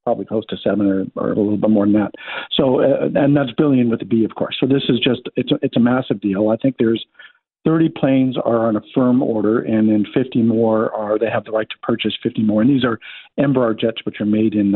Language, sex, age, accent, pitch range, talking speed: English, male, 50-69, American, 110-130 Hz, 260 wpm